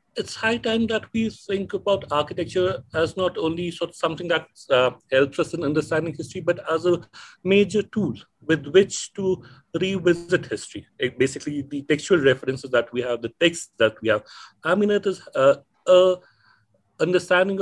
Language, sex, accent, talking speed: English, male, Indian, 175 wpm